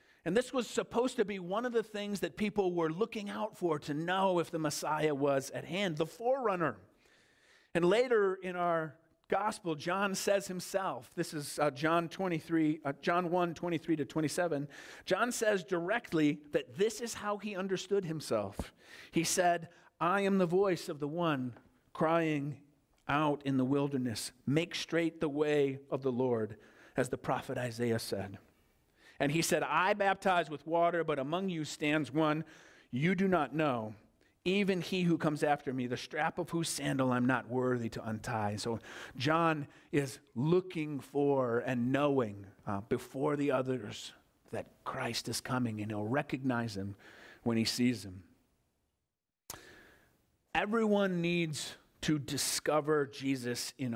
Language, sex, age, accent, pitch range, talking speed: English, male, 50-69, American, 130-180 Hz, 160 wpm